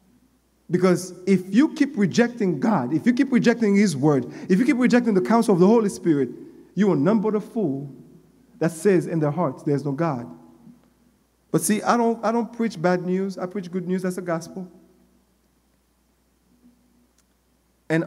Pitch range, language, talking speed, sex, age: 160-235 Hz, English, 180 wpm, male, 50-69